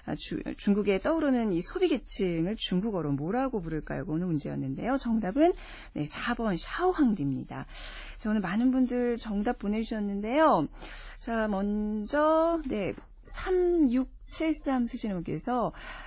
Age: 40-59